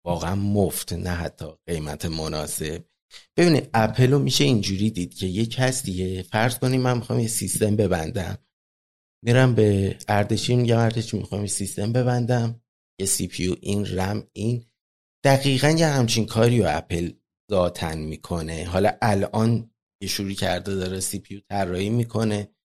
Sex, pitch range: male, 95-120 Hz